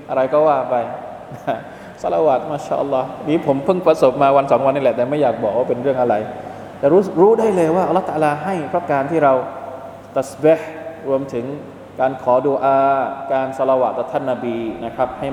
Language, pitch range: Thai, 135-175 Hz